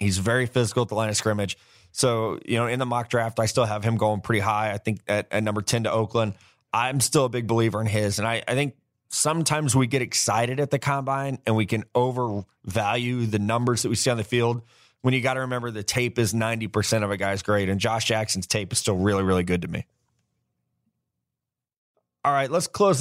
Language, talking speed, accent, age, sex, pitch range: English, 230 wpm, American, 20-39, male, 110-135 Hz